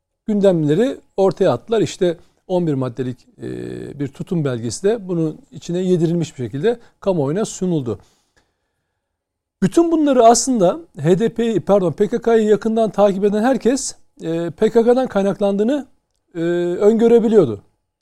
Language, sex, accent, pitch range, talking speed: Turkish, male, native, 145-215 Hz, 100 wpm